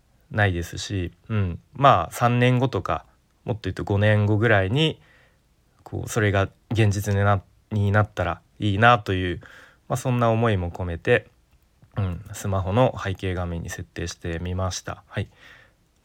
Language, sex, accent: Japanese, male, native